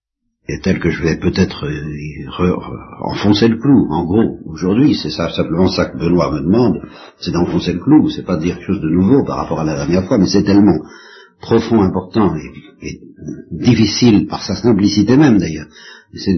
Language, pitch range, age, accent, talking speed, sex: French, 90-120 Hz, 60-79, French, 200 wpm, male